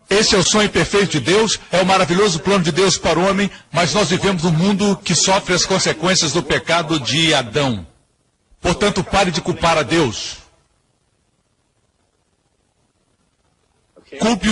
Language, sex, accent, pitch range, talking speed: Portuguese, male, Brazilian, 165-195 Hz, 150 wpm